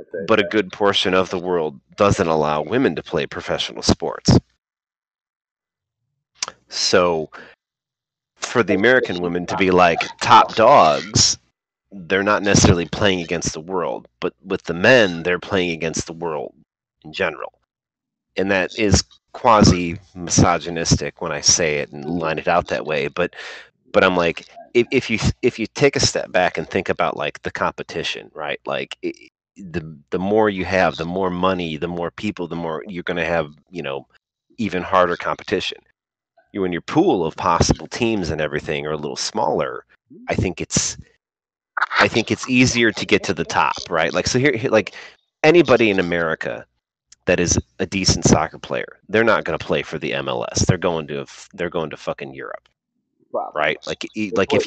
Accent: American